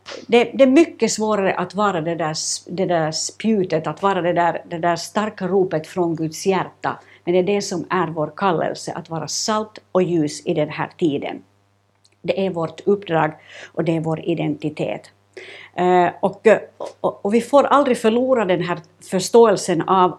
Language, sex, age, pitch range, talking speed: Swedish, female, 60-79, 165-195 Hz, 175 wpm